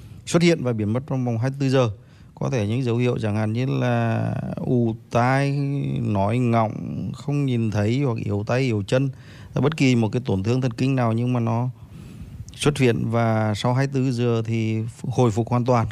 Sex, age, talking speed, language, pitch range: male, 20-39, 200 wpm, Vietnamese, 110-130 Hz